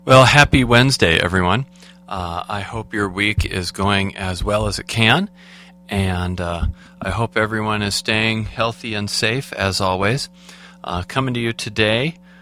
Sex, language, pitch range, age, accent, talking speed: male, English, 95-130 Hz, 40-59, American, 160 wpm